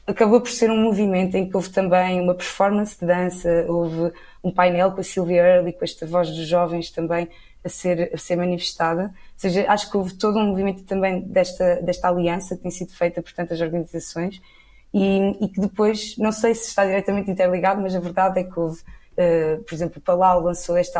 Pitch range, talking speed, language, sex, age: 170-190 Hz, 205 wpm, Portuguese, female, 20-39